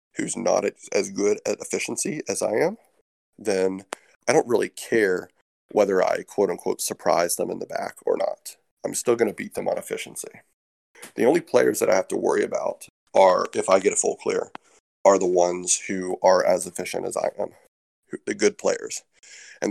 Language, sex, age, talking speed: English, male, 30-49, 190 wpm